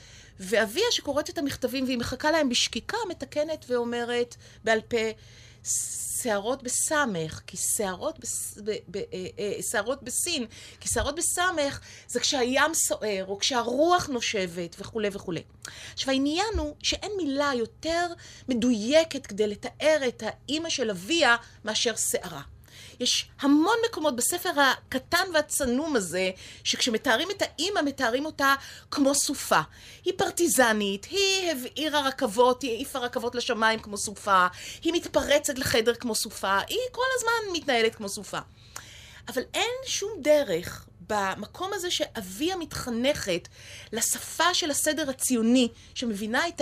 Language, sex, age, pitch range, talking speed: Hebrew, female, 30-49, 225-315 Hz, 120 wpm